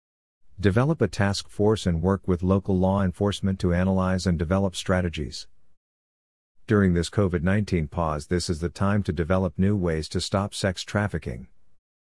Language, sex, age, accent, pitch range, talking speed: English, male, 50-69, American, 85-100 Hz, 155 wpm